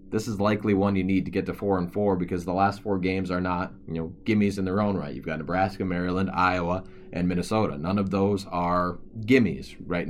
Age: 20-39